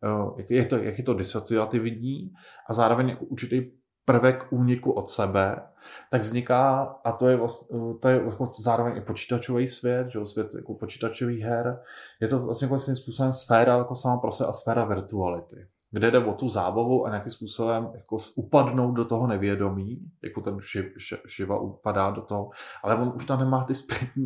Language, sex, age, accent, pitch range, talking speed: Czech, male, 20-39, native, 110-130 Hz, 180 wpm